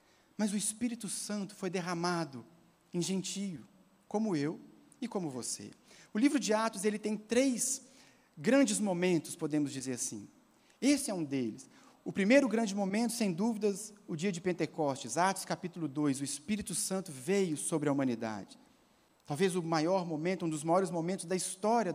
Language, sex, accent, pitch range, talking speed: Portuguese, male, Brazilian, 170-225 Hz, 160 wpm